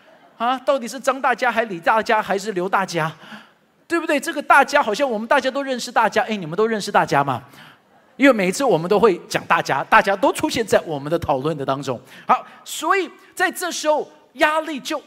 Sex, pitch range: male, 215-345 Hz